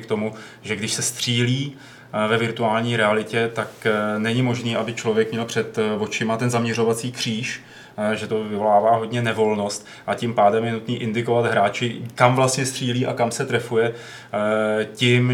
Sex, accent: male, native